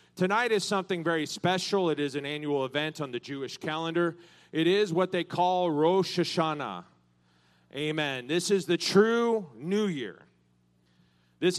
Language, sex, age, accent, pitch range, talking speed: English, male, 40-59, American, 160-215 Hz, 150 wpm